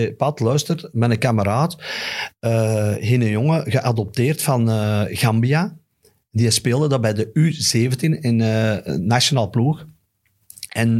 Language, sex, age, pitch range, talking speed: Dutch, male, 50-69, 110-140 Hz, 125 wpm